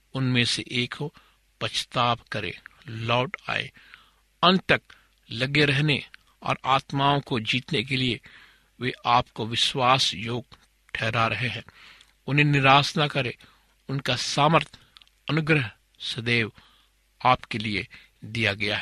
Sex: male